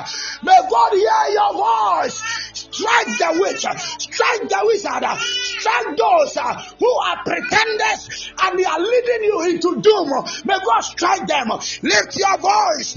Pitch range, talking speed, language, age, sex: 270-375 Hz, 140 wpm, English, 30-49, male